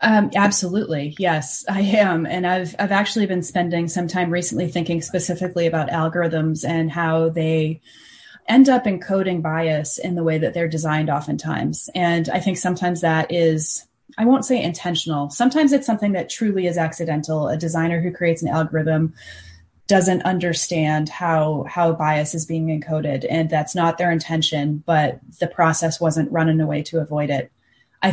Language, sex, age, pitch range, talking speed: English, female, 20-39, 160-180 Hz, 165 wpm